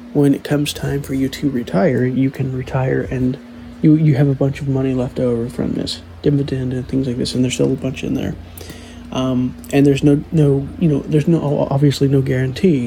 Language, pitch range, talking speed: English, 115-150 Hz, 220 wpm